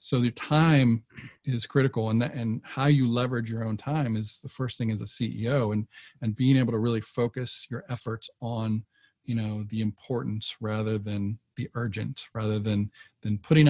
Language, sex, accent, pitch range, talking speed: English, male, American, 110-130 Hz, 190 wpm